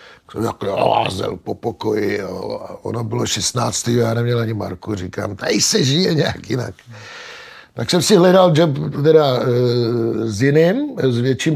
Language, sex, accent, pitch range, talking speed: Czech, male, native, 115-140 Hz, 140 wpm